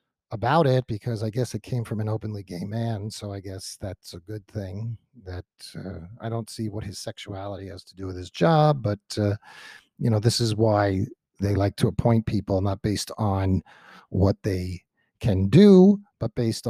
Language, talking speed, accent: English, 195 wpm, American